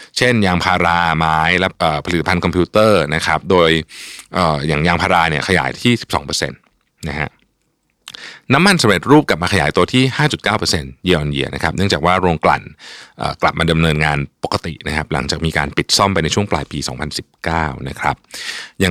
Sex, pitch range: male, 75-95 Hz